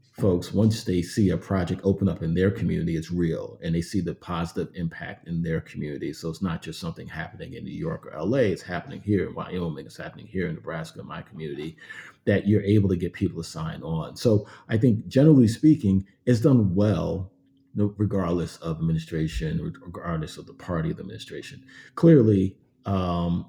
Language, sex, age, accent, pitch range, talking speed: English, male, 40-59, American, 85-105 Hz, 190 wpm